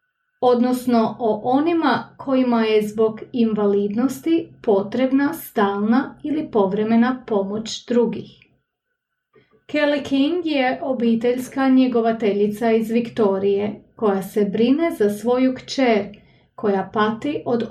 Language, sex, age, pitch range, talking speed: English, female, 30-49, 215-270 Hz, 100 wpm